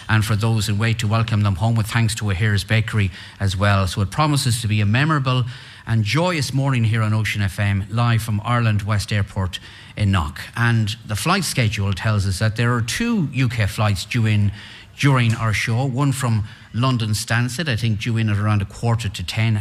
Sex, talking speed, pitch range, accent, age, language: male, 210 wpm, 100-120 Hz, Irish, 30-49, English